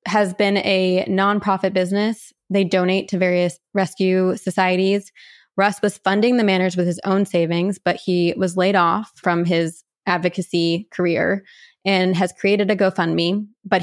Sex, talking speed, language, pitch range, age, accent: female, 150 wpm, English, 180-205 Hz, 20-39, American